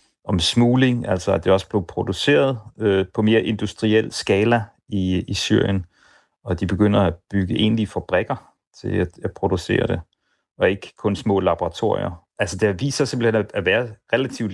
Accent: native